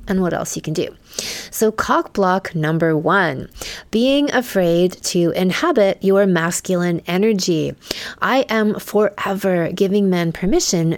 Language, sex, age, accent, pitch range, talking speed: English, female, 30-49, American, 175-225 Hz, 130 wpm